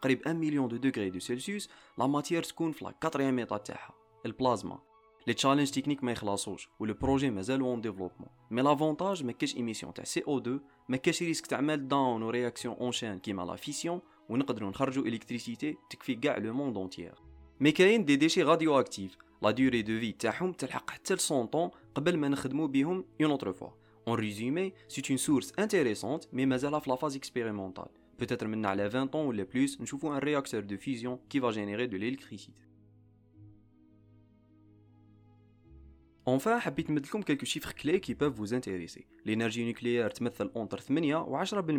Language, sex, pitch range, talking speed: Arabic, male, 110-145 Hz, 170 wpm